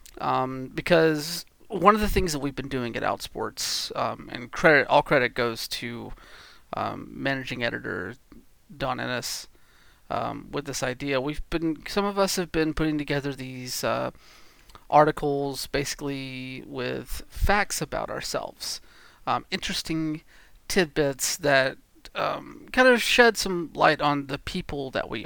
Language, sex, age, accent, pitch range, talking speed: English, male, 30-49, American, 130-160 Hz, 145 wpm